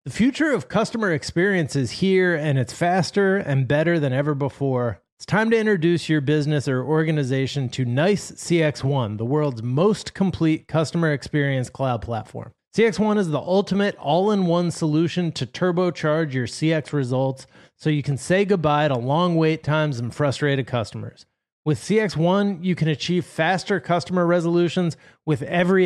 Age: 30-49